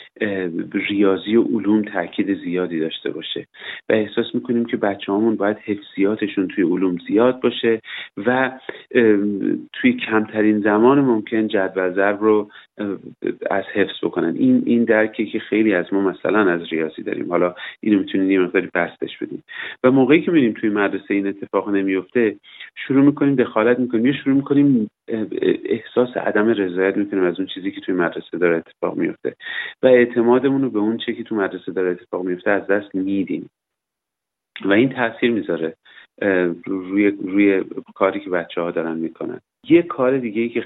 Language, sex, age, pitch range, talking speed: Persian, male, 40-59, 95-120 Hz, 160 wpm